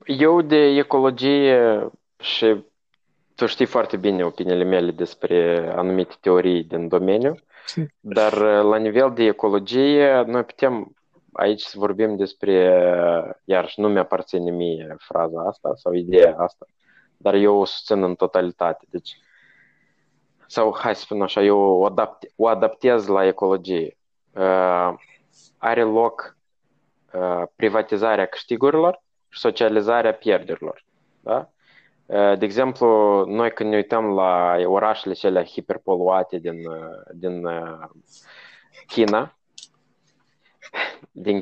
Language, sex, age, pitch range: Romanian, male, 20-39, 90-120 Hz